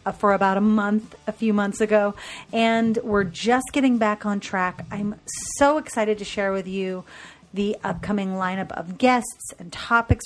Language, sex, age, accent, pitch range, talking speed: English, female, 40-59, American, 185-235 Hz, 170 wpm